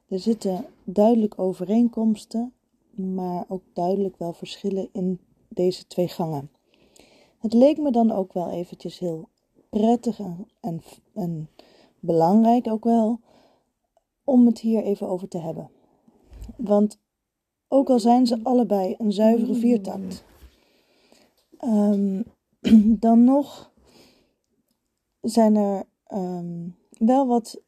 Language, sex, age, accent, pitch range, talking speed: Dutch, female, 20-39, Dutch, 190-235 Hz, 105 wpm